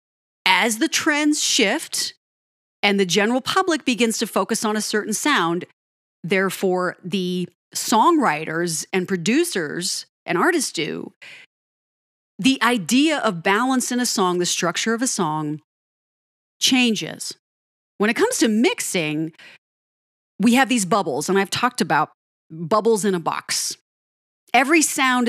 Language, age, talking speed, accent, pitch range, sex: English, 30-49, 130 wpm, American, 185-260 Hz, female